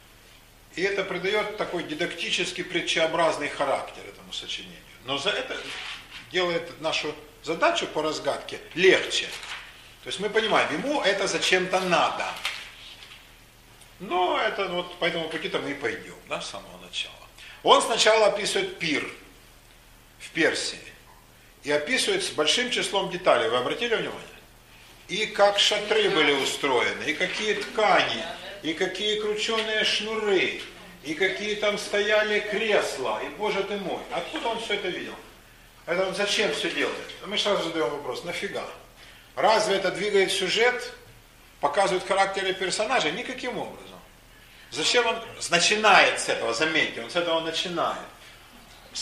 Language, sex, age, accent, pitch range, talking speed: Russian, male, 50-69, native, 170-215 Hz, 135 wpm